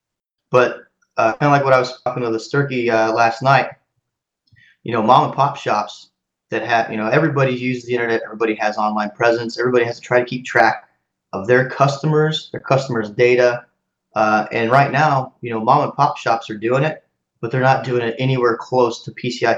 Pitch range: 110-130 Hz